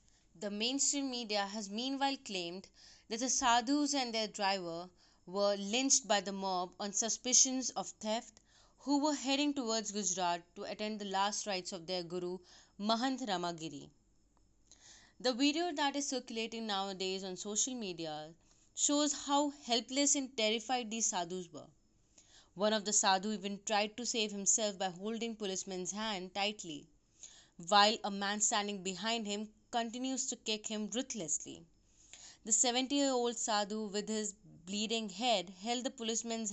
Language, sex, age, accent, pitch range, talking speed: Hindi, female, 20-39, native, 180-240 Hz, 145 wpm